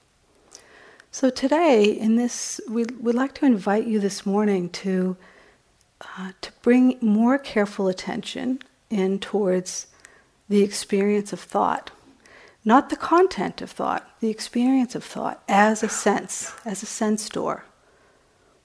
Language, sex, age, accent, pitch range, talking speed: English, female, 50-69, American, 195-230 Hz, 130 wpm